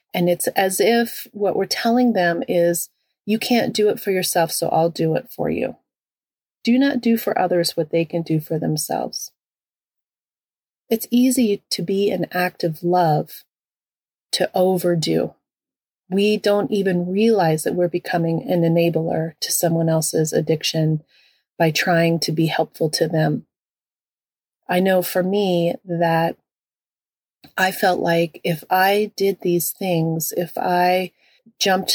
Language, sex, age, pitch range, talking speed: English, female, 30-49, 170-200 Hz, 145 wpm